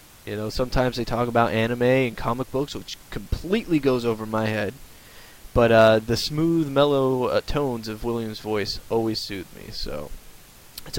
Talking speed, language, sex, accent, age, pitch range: 170 wpm, English, male, American, 20-39, 110-135 Hz